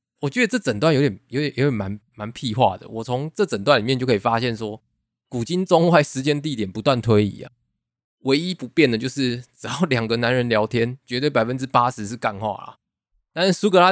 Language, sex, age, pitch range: Chinese, male, 20-39, 110-145 Hz